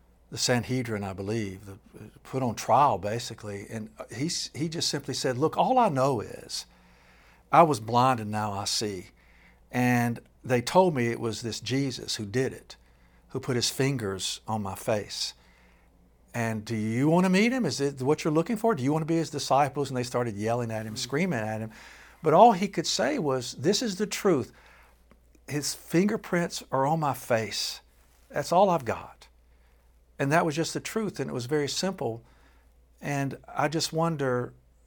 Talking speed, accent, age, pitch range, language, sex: 185 wpm, American, 60-79, 100-150 Hz, English, male